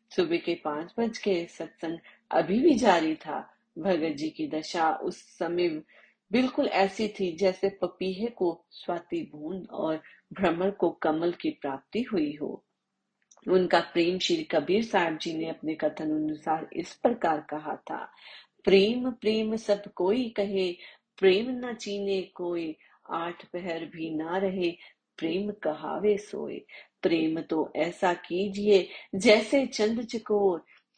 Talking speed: 135 wpm